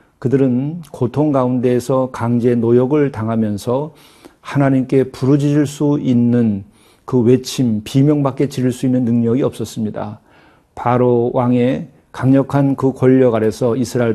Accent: native